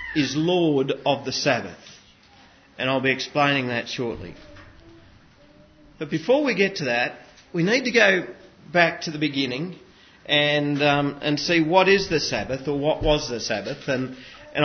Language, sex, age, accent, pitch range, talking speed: English, male, 40-59, Australian, 135-185 Hz, 165 wpm